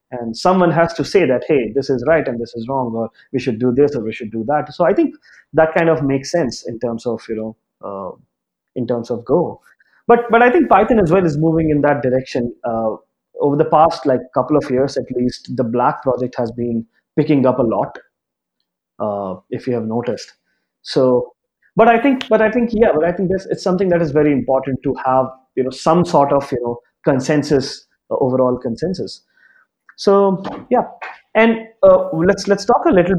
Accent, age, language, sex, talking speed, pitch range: Indian, 30-49, English, male, 215 wpm, 125-170 Hz